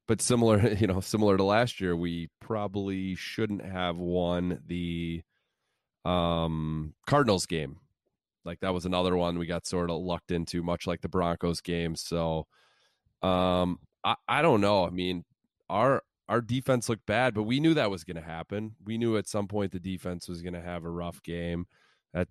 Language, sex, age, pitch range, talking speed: English, male, 20-39, 85-100 Hz, 185 wpm